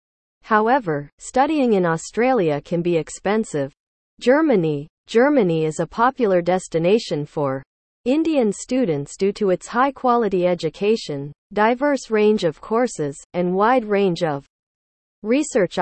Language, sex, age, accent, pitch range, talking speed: English, female, 40-59, American, 160-235 Hz, 115 wpm